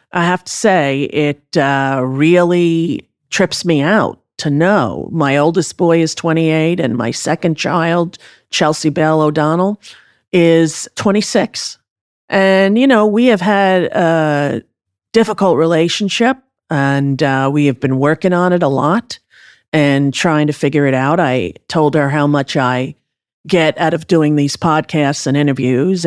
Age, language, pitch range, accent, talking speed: 40-59, English, 140-190 Hz, American, 150 wpm